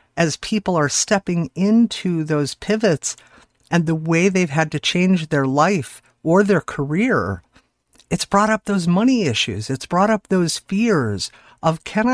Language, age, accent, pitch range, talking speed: English, 50-69, American, 125-180 Hz, 160 wpm